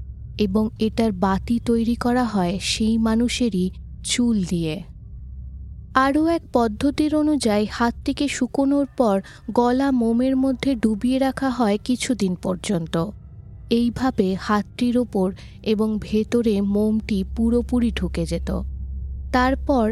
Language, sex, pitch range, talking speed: Bengali, female, 195-250 Hz, 105 wpm